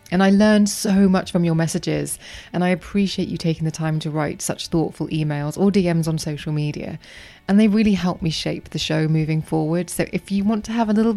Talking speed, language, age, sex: 230 wpm, English, 20-39, female